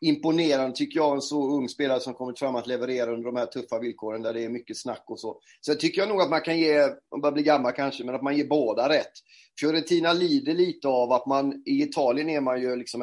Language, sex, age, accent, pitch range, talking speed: Swedish, male, 30-49, native, 120-155 Hz, 260 wpm